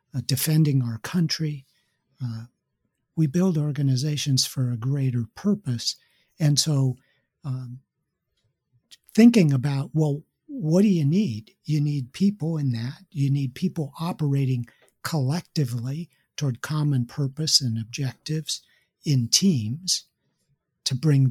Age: 60-79